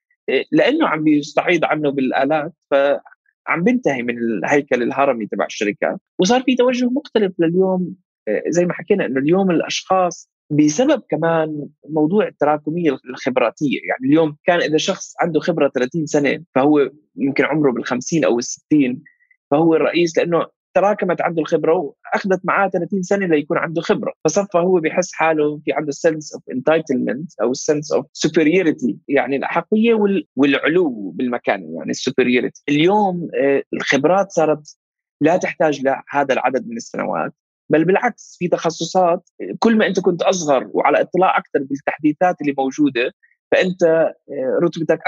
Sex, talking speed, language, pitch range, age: male, 135 wpm, Arabic, 145-195 Hz, 20-39